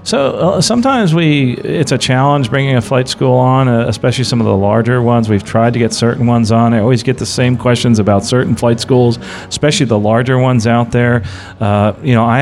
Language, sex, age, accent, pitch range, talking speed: English, male, 40-59, American, 105-130 Hz, 220 wpm